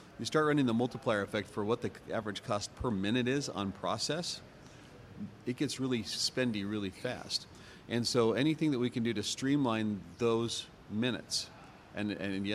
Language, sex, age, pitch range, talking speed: English, male, 40-59, 100-120 Hz, 170 wpm